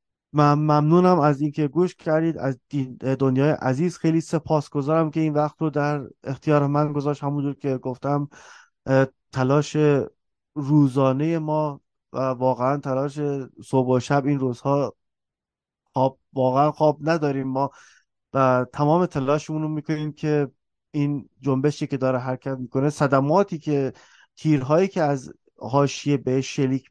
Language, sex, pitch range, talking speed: Persian, male, 135-155 Hz, 125 wpm